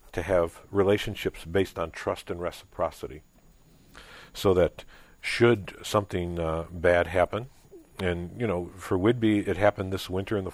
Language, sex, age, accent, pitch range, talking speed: English, male, 50-69, American, 90-105 Hz, 150 wpm